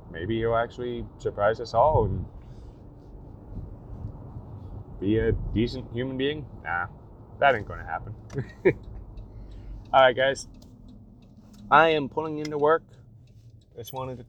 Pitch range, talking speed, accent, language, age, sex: 105-130 Hz, 120 wpm, American, English, 20-39, male